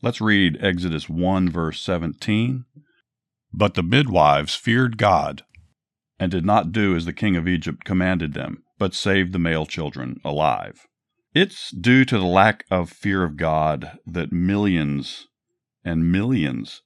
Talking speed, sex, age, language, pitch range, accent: 145 wpm, male, 50-69, English, 80-105 Hz, American